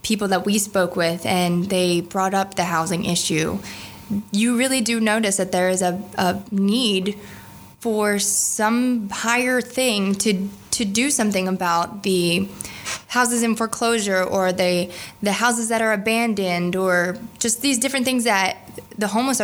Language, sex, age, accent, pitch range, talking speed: English, female, 20-39, American, 185-225 Hz, 155 wpm